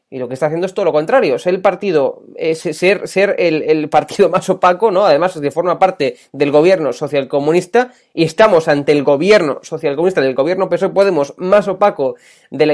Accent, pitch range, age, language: Spanish, 155-195 Hz, 20-39, Spanish